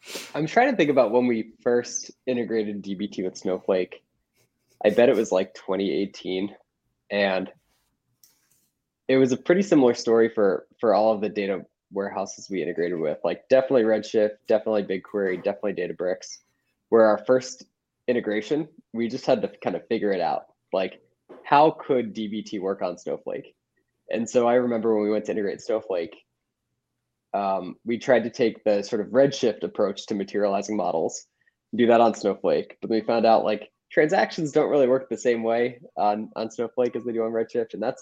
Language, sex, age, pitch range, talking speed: English, male, 20-39, 105-130 Hz, 175 wpm